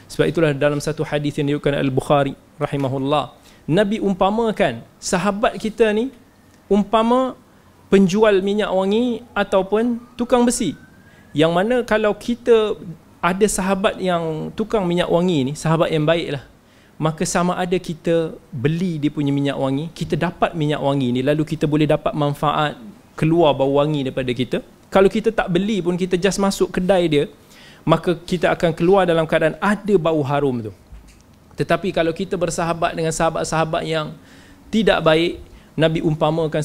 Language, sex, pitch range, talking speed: Malay, male, 150-195 Hz, 145 wpm